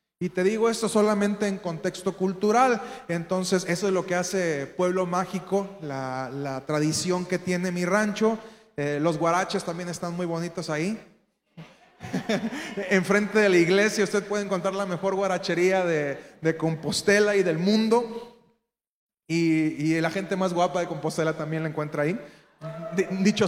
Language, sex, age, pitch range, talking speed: Spanish, male, 30-49, 170-220 Hz, 155 wpm